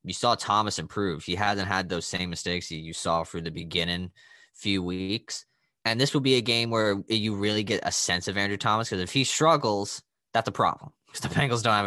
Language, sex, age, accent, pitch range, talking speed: English, male, 20-39, American, 90-115 Hz, 225 wpm